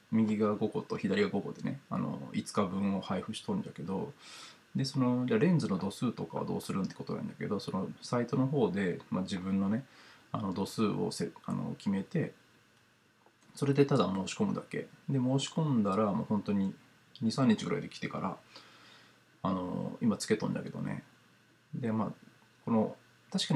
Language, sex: Japanese, male